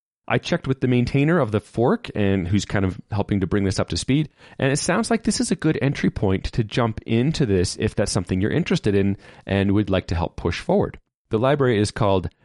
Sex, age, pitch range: male, 30-49, 95-115 Hz